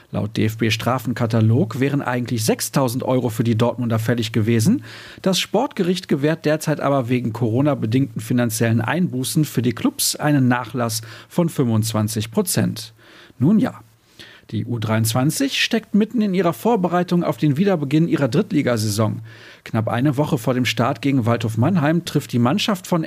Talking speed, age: 145 wpm, 40-59